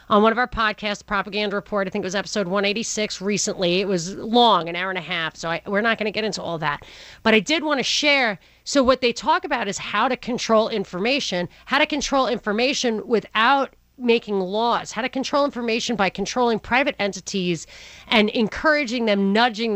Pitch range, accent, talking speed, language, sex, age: 195-240 Hz, American, 205 wpm, English, female, 40-59